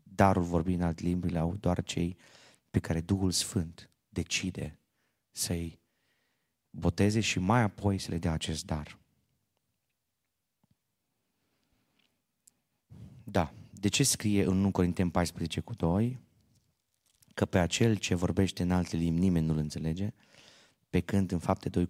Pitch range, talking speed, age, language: 85-100 Hz, 125 wpm, 30-49, Romanian